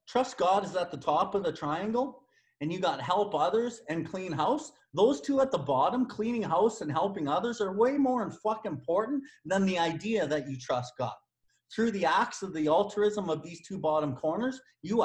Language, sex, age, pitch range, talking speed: English, male, 30-49, 140-205 Hz, 205 wpm